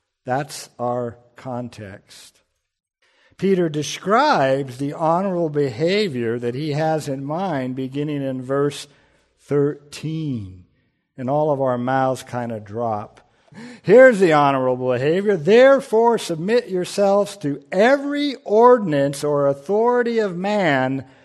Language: English